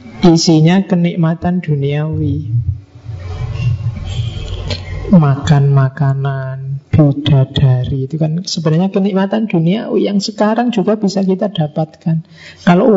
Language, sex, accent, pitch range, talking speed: Indonesian, male, native, 145-185 Hz, 80 wpm